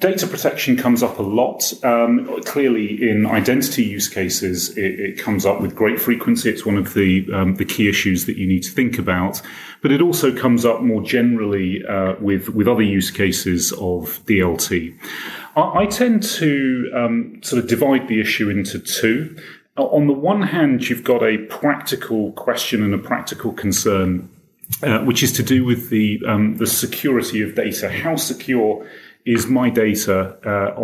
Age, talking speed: 30-49, 175 wpm